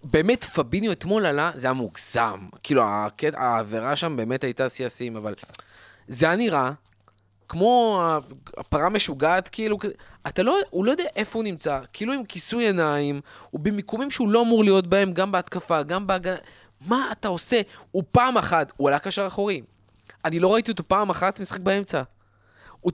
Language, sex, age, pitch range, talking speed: Hebrew, male, 20-39, 125-205 Hz, 165 wpm